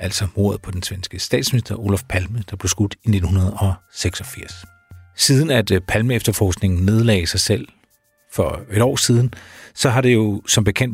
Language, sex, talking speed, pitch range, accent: Danish, male, 160 wpm, 95-115 Hz, native